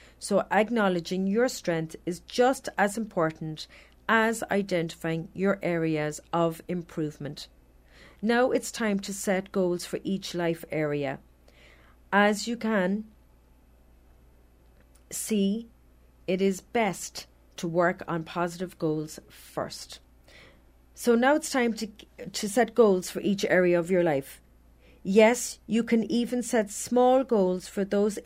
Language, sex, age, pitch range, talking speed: English, female, 40-59, 145-220 Hz, 125 wpm